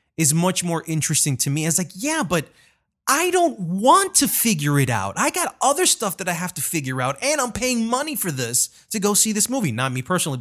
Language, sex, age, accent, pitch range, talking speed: English, male, 30-49, American, 140-220 Hz, 235 wpm